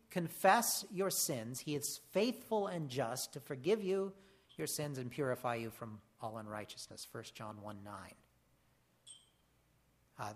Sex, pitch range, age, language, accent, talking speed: male, 120-185 Hz, 50-69, English, American, 140 wpm